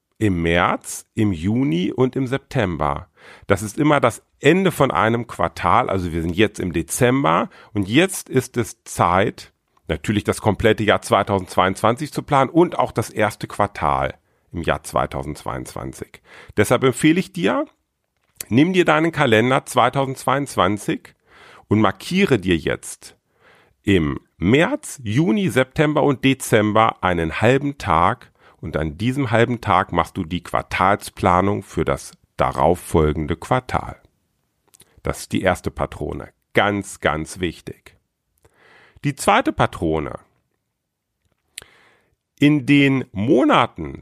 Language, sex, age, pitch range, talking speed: German, male, 40-59, 90-140 Hz, 125 wpm